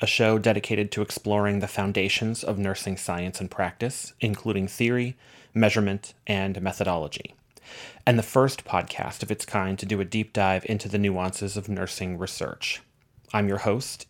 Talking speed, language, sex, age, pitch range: 160 wpm, English, male, 30-49, 100-115 Hz